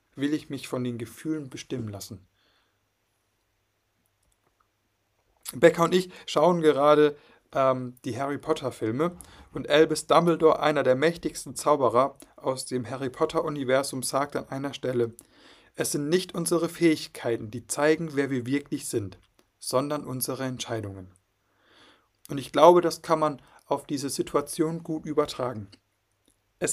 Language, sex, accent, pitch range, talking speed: German, male, German, 120-160 Hz, 135 wpm